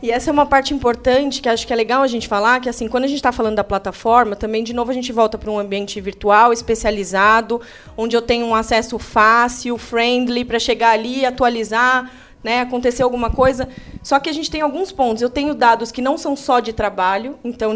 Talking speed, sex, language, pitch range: 225 wpm, female, Portuguese, 220-270 Hz